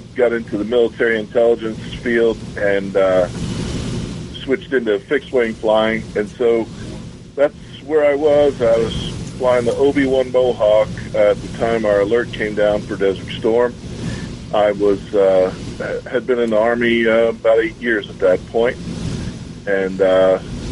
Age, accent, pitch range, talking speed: 40-59, American, 100-125 Hz, 150 wpm